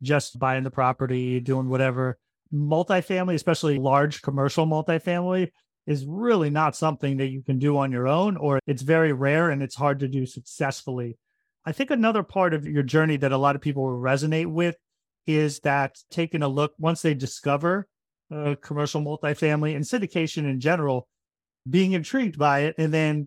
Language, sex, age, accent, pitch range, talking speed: English, male, 30-49, American, 135-160 Hz, 175 wpm